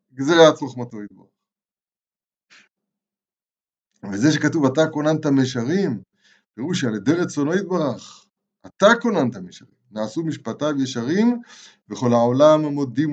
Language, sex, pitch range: Hebrew, male, 135-195 Hz